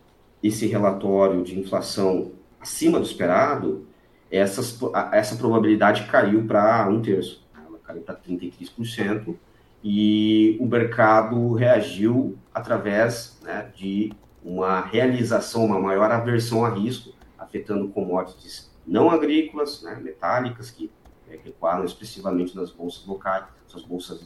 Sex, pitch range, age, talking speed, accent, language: male, 95-120 Hz, 40-59, 115 wpm, Brazilian, Portuguese